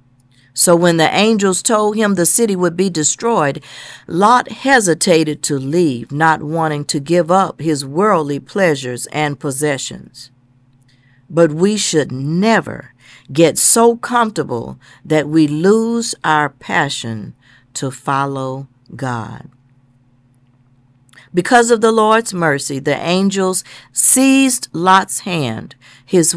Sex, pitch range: female, 130-200 Hz